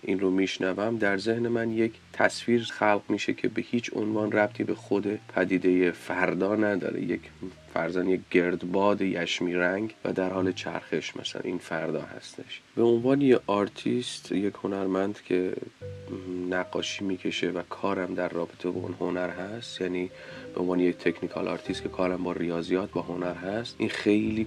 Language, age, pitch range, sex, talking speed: Persian, 30-49, 90-100 Hz, male, 160 wpm